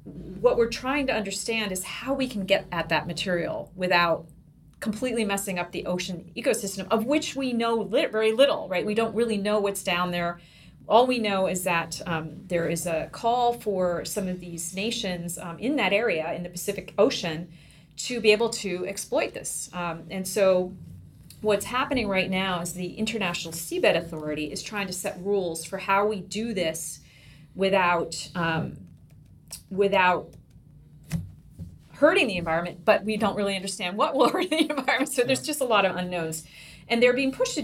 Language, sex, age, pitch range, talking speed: English, female, 40-59, 170-220 Hz, 180 wpm